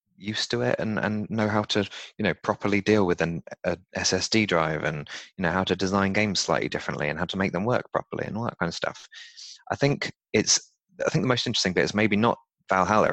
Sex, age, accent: male, 20-39, British